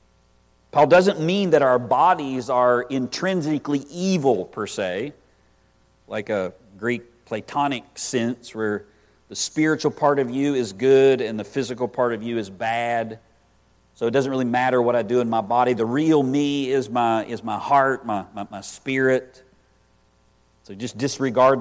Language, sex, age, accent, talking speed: English, male, 50-69, American, 160 wpm